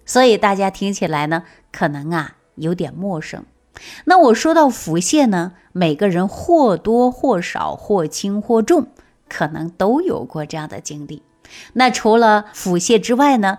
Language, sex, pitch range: Chinese, female, 165-250 Hz